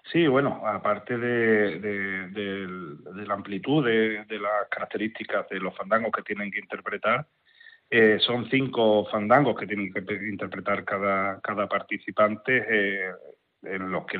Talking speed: 150 wpm